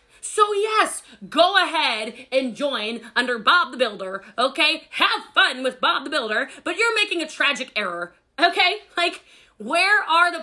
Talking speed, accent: 160 wpm, American